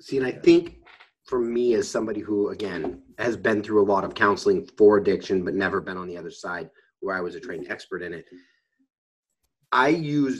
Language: English